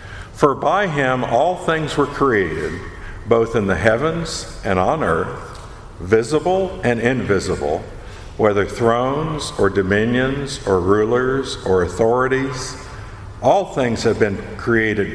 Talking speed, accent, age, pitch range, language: 120 wpm, American, 50-69, 105-145 Hz, English